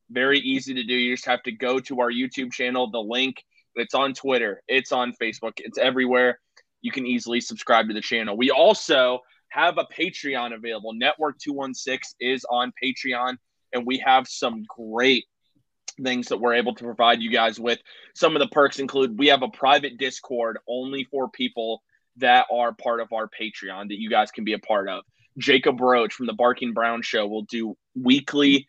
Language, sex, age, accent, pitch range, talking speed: English, male, 20-39, American, 115-135 Hz, 190 wpm